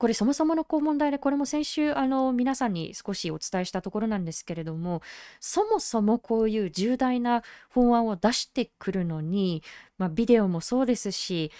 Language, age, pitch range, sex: Japanese, 20-39, 185-270 Hz, female